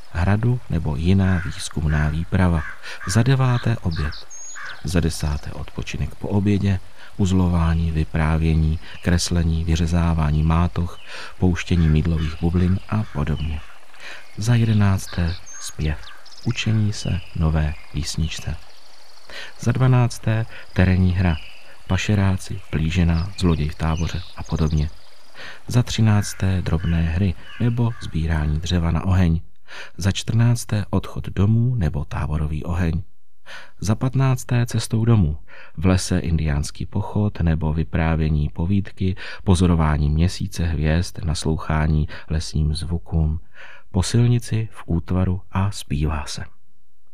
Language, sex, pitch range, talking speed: Czech, male, 80-100 Hz, 105 wpm